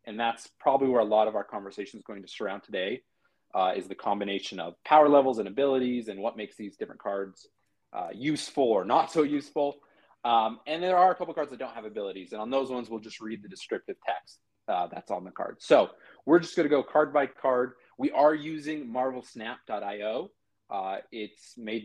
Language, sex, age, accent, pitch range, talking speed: English, male, 30-49, American, 110-145 Hz, 210 wpm